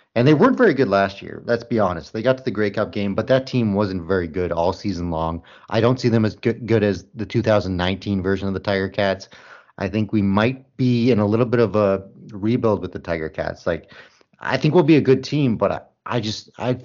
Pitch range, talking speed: 95-115 Hz, 245 wpm